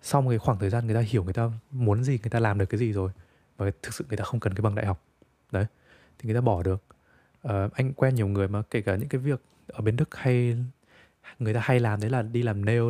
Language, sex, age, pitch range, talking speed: Vietnamese, male, 20-39, 100-125 Hz, 275 wpm